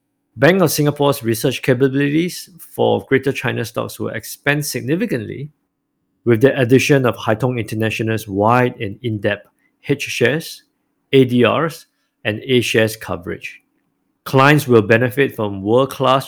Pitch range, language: 110-135 Hz, English